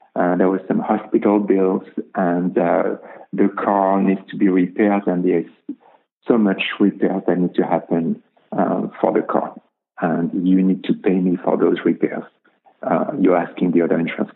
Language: English